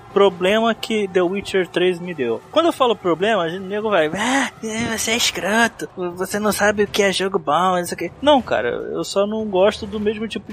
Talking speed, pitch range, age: 205 wpm, 180-235 Hz, 20-39